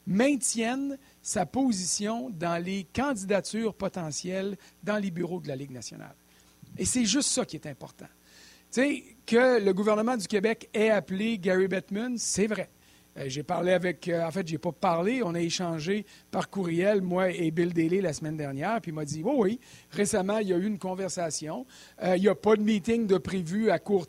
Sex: male